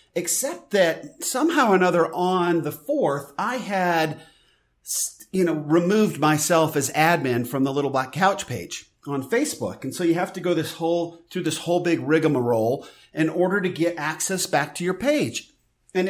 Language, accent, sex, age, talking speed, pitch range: English, American, male, 40-59, 175 wpm, 145-185 Hz